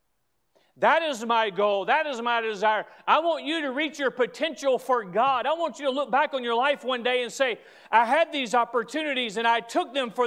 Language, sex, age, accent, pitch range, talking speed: English, male, 40-59, American, 225-310 Hz, 230 wpm